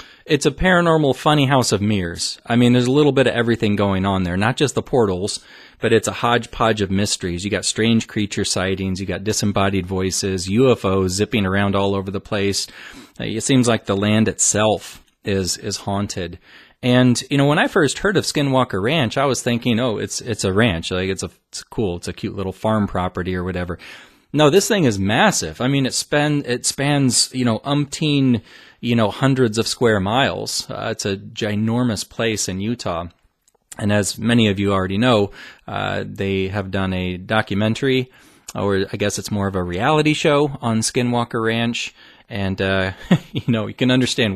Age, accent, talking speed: 30-49, American, 195 wpm